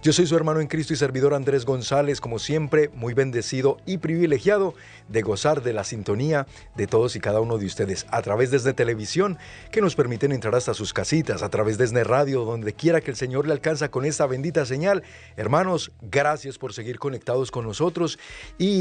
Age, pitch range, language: 50-69, 115-155 Hz, Spanish